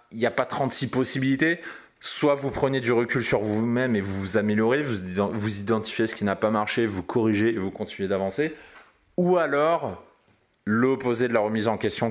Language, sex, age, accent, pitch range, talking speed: French, male, 30-49, French, 110-140 Hz, 195 wpm